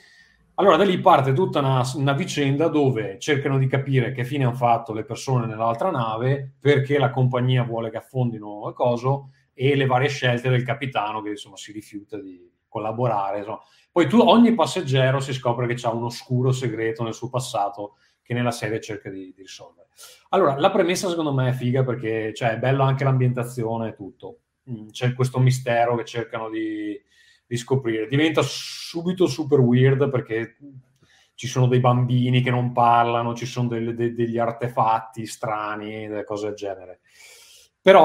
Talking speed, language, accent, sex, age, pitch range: 165 wpm, Italian, native, male, 30-49, 115-140 Hz